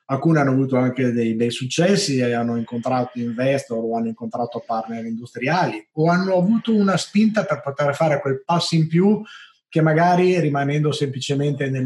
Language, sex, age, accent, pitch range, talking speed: Italian, male, 30-49, native, 120-165 Hz, 165 wpm